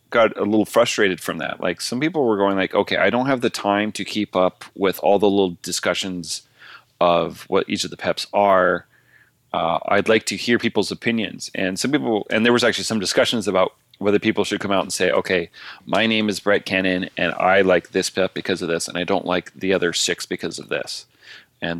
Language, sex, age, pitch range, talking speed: English, male, 30-49, 90-110 Hz, 225 wpm